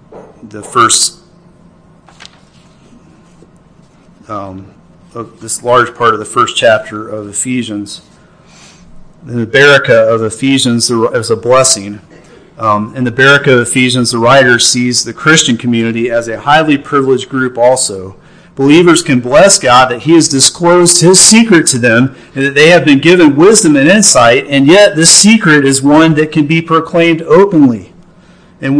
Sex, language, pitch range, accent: male, English, 125-160 Hz, American